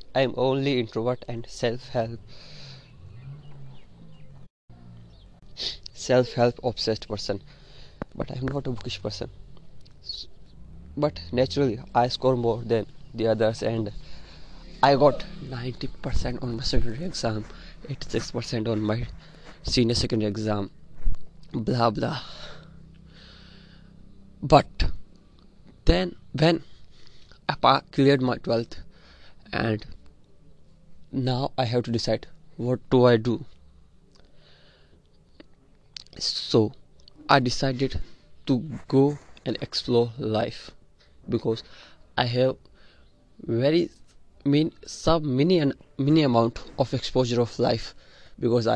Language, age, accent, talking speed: English, 20-39, Indian, 100 wpm